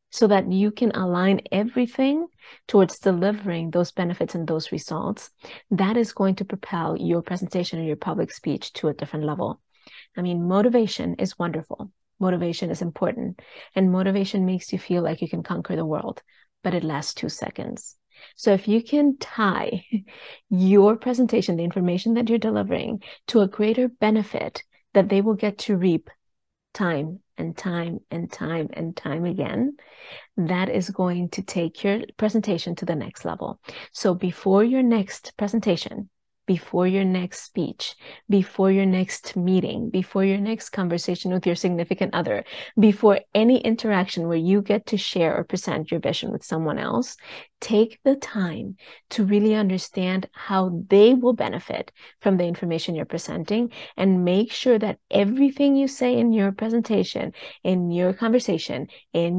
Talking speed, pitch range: 160 wpm, 175-220 Hz